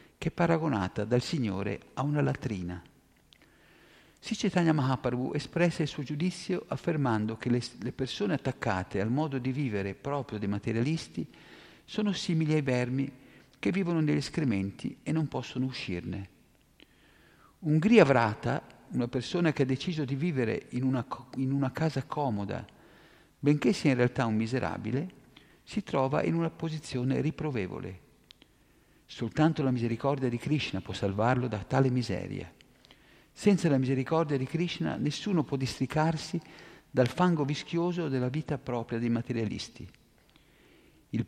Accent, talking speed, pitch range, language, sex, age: native, 130 wpm, 120-155 Hz, Italian, male, 50-69